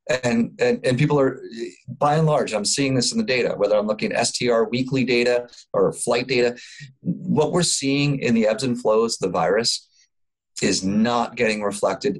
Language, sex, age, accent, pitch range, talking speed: English, male, 30-49, American, 110-155 Hz, 190 wpm